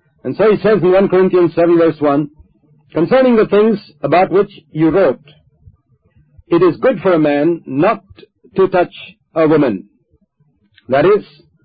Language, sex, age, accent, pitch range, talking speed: English, male, 50-69, Indian, 145-180 Hz, 155 wpm